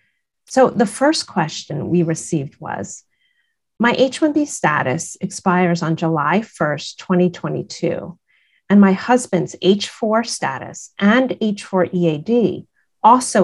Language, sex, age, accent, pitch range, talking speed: English, female, 40-59, American, 175-245 Hz, 105 wpm